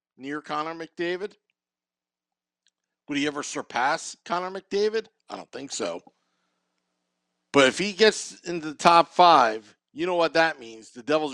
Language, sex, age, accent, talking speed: English, male, 50-69, American, 150 wpm